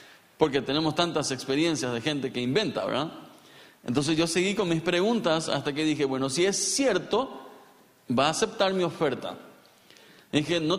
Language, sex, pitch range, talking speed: Spanish, male, 135-190 Hz, 165 wpm